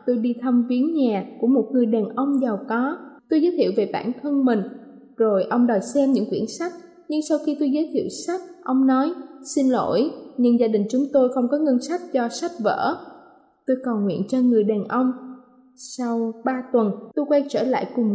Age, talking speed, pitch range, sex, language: 20-39, 210 wpm, 230-285 Hz, female, Vietnamese